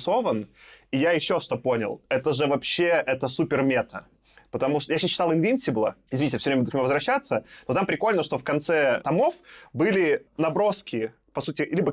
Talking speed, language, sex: 170 wpm, Russian, male